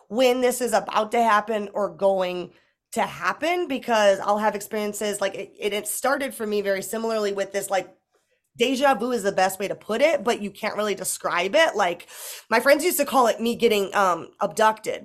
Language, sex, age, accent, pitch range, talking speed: English, female, 20-39, American, 200-245 Hz, 205 wpm